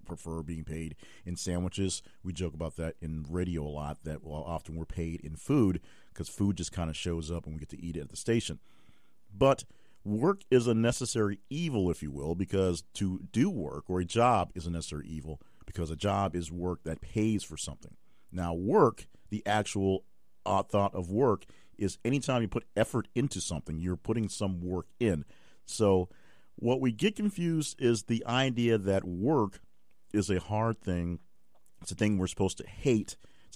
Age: 50-69